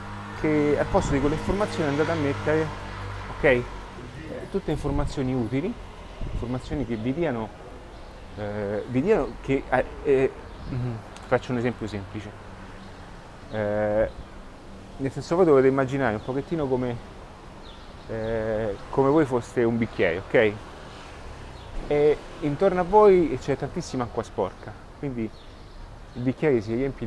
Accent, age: native, 30-49